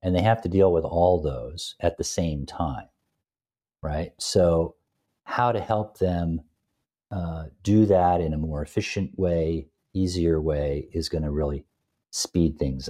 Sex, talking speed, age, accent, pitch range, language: male, 155 wpm, 50-69, American, 75-90 Hz, English